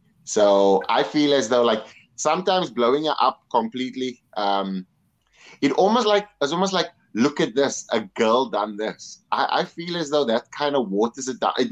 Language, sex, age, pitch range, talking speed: English, male, 30-49, 100-140 Hz, 185 wpm